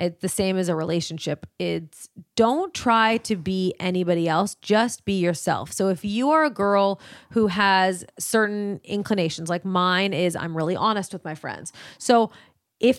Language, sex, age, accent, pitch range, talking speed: English, female, 30-49, American, 190-250 Hz, 170 wpm